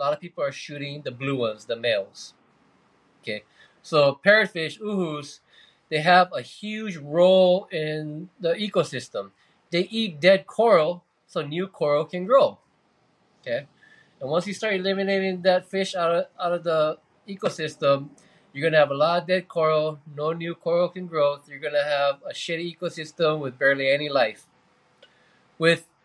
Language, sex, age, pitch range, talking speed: English, male, 20-39, 145-185 Hz, 165 wpm